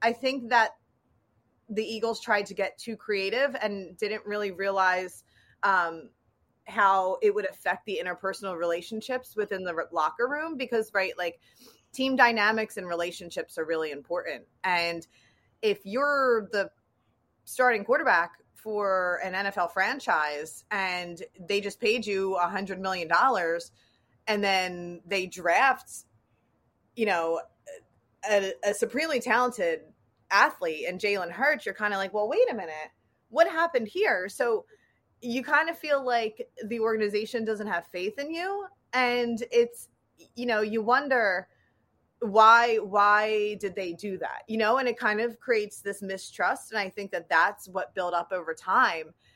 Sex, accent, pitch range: female, American, 185-245 Hz